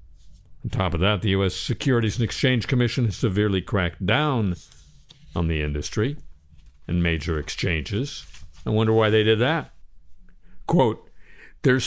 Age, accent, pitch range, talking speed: 60-79, American, 80-120 Hz, 140 wpm